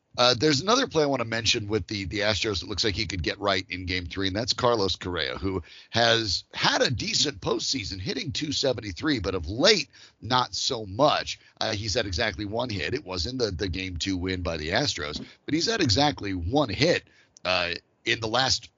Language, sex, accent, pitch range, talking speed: English, male, American, 95-125 Hz, 215 wpm